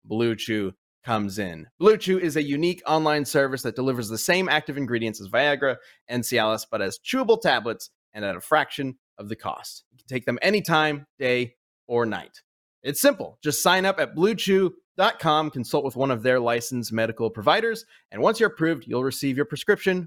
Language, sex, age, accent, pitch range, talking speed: English, male, 30-49, American, 130-195 Hz, 190 wpm